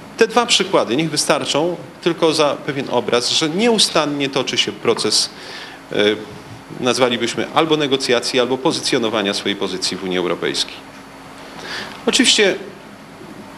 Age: 40-59